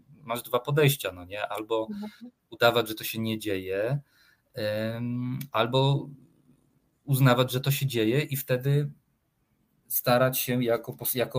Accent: native